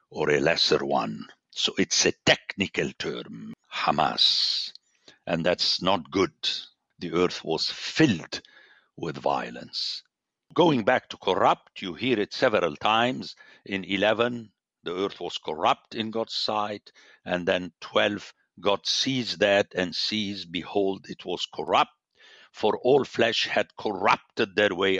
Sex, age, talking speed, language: male, 60-79, 135 wpm, English